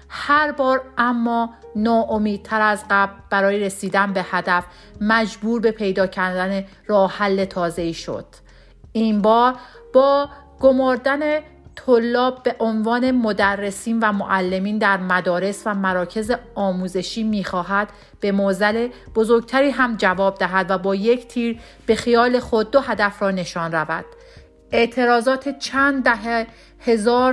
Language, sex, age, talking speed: Persian, female, 40-59, 125 wpm